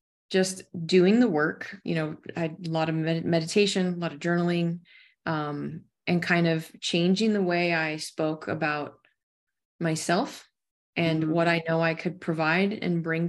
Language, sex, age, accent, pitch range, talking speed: English, female, 20-39, American, 170-200 Hz, 165 wpm